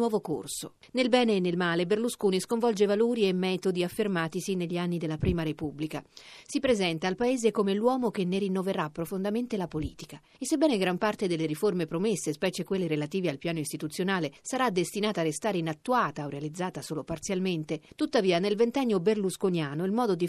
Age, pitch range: 40-59, 165-215 Hz